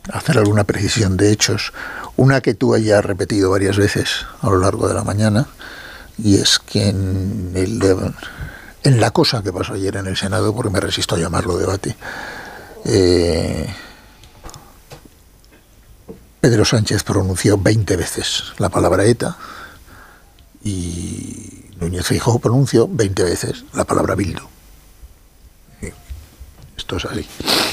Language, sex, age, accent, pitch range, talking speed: Spanish, male, 60-79, Spanish, 95-115 Hz, 130 wpm